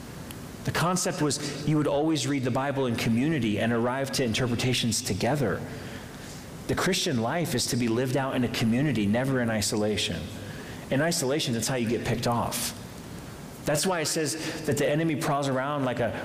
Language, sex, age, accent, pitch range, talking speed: English, male, 30-49, American, 110-135 Hz, 180 wpm